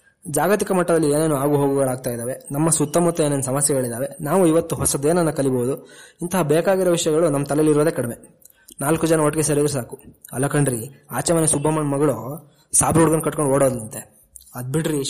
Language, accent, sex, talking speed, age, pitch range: Kannada, native, male, 140 wpm, 20-39, 135-160 Hz